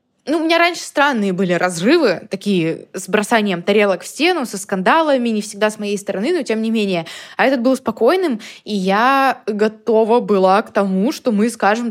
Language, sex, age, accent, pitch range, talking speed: Russian, female, 20-39, native, 205-260 Hz, 185 wpm